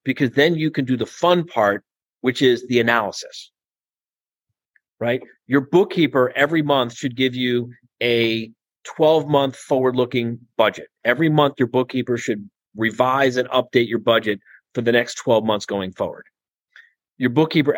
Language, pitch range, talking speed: English, 120-145 Hz, 145 wpm